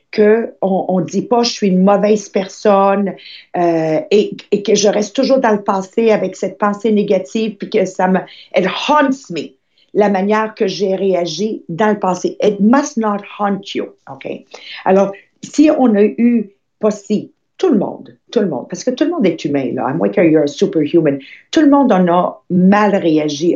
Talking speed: 200 wpm